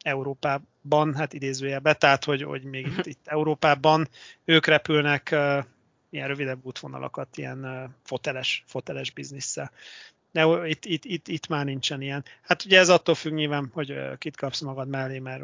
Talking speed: 165 wpm